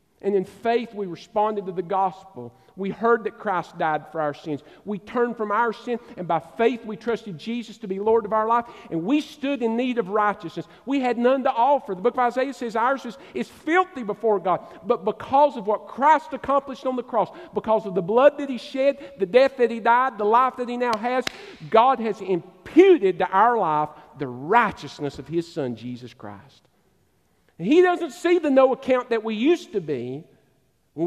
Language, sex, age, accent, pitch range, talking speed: English, male, 50-69, American, 165-255 Hz, 210 wpm